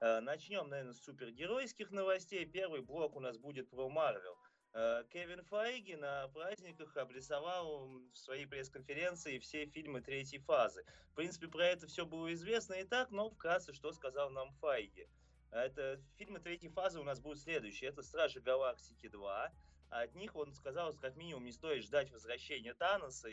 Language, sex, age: Russian, male, 20-39